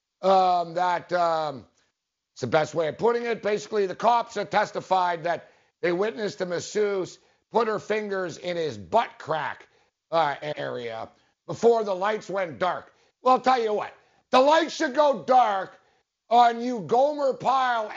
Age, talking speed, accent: 60-79, 160 wpm, American